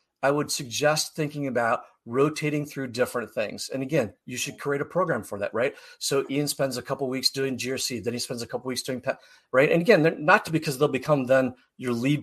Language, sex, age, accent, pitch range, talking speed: English, male, 40-59, American, 120-150 Hz, 245 wpm